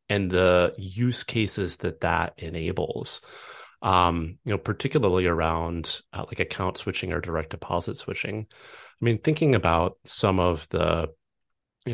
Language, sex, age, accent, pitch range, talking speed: English, male, 30-49, American, 85-110 Hz, 140 wpm